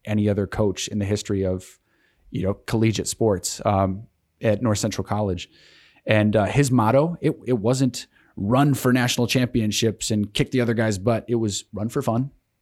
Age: 30-49